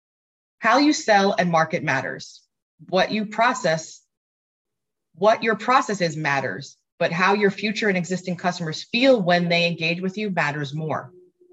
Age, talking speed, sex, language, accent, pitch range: 30-49, 150 wpm, female, English, American, 145-185 Hz